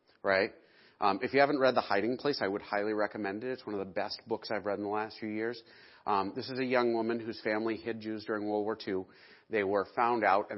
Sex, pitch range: male, 105-135 Hz